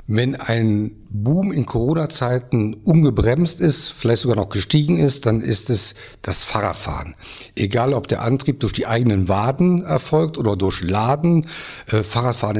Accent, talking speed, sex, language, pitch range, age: German, 145 wpm, male, German, 105-140 Hz, 60-79